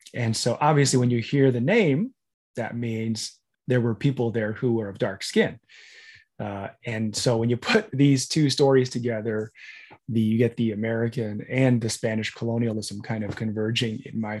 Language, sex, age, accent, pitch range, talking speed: English, male, 20-39, American, 115-140 Hz, 175 wpm